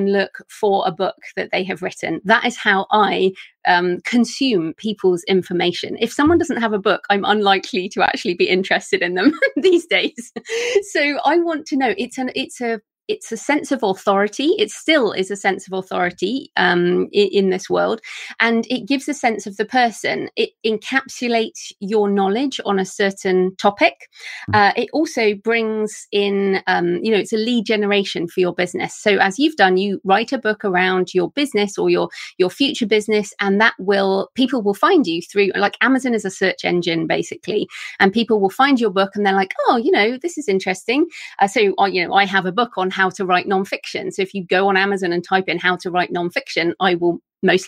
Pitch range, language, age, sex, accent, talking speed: 190-255 Hz, English, 30-49, female, British, 210 wpm